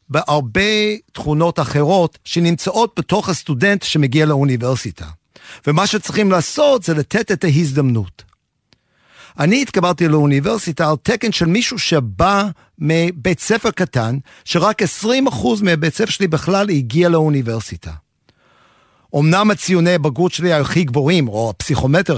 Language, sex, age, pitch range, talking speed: Hebrew, male, 50-69, 130-180 Hz, 115 wpm